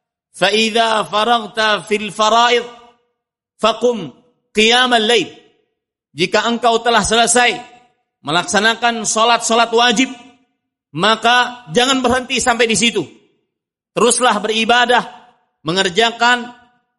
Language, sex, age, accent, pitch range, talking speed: Indonesian, male, 40-59, native, 215-245 Hz, 65 wpm